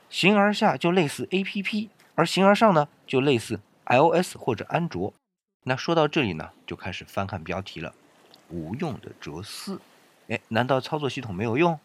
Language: Chinese